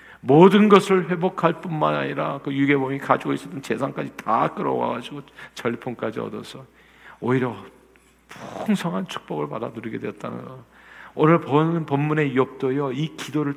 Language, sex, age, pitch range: Korean, male, 50-69, 135-195 Hz